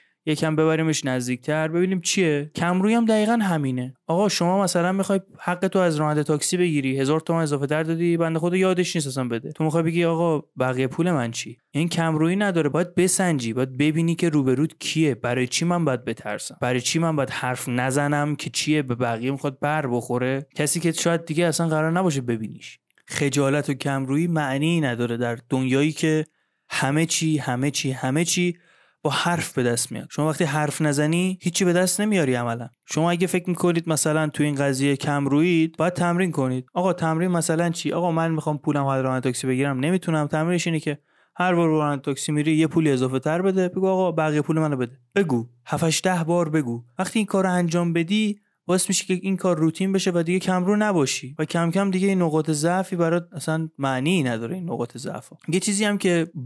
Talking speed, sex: 200 wpm, male